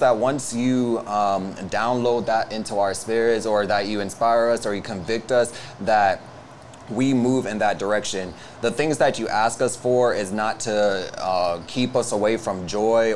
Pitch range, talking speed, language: 105-120 Hz, 180 wpm, English